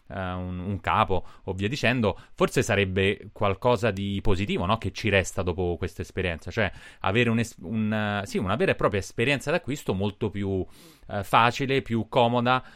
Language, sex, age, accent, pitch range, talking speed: Italian, male, 30-49, native, 90-110 Hz, 175 wpm